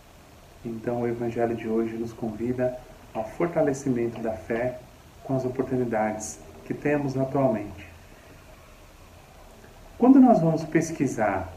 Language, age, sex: Portuguese, 40-59, male